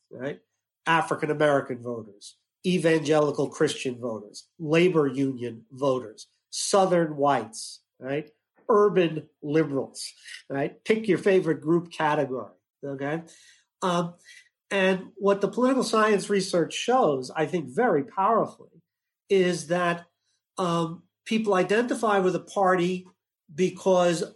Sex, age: male, 50-69